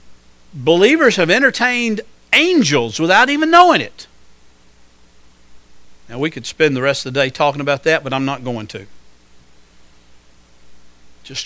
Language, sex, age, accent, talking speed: English, male, 60-79, American, 135 wpm